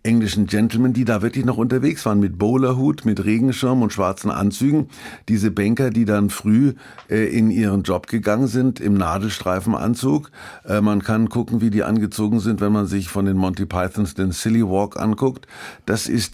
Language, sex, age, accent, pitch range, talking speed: German, male, 50-69, German, 95-115 Hz, 180 wpm